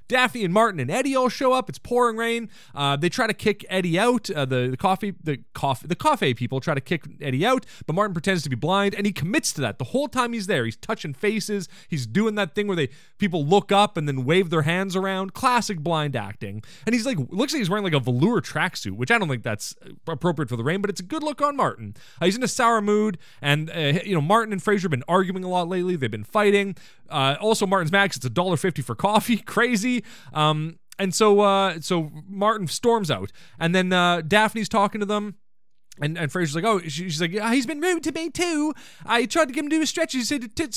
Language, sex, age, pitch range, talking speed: English, male, 20-39, 155-220 Hz, 250 wpm